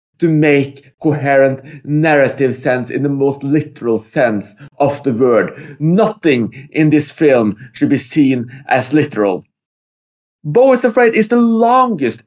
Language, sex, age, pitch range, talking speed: English, male, 30-49, 145-180 Hz, 135 wpm